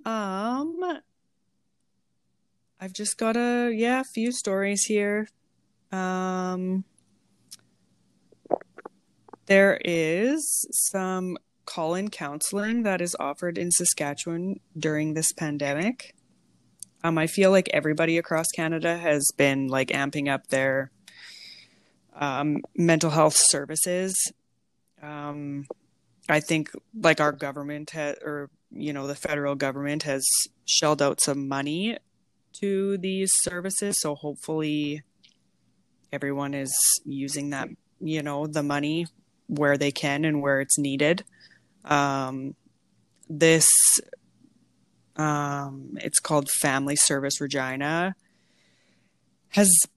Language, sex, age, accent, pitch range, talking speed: English, female, 20-39, American, 145-185 Hz, 105 wpm